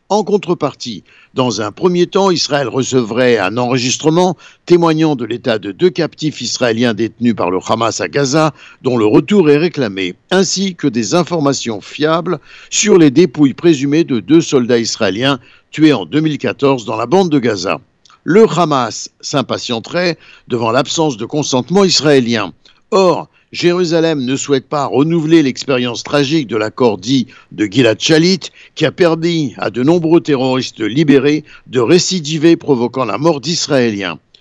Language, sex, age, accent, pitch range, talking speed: Italian, male, 60-79, French, 130-175 Hz, 150 wpm